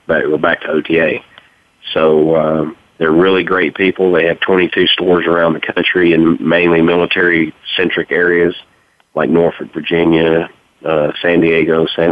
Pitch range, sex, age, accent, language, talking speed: 80-90 Hz, male, 40-59, American, English, 145 wpm